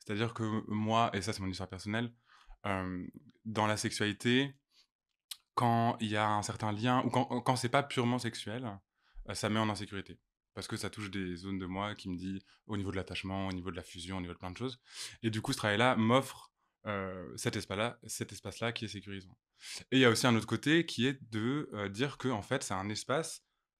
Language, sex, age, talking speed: French, male, 20-39, 215 wpm